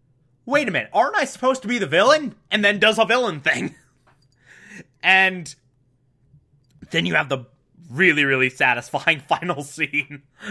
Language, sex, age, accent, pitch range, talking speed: English, male, 20-39, American, 130-180 Hz, 150 wpm